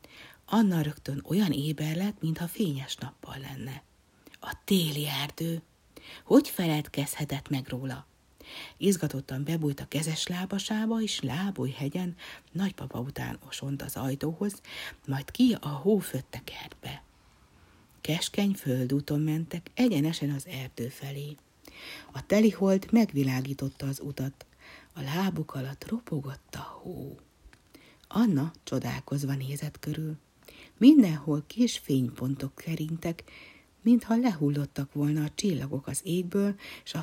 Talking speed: 115 wpm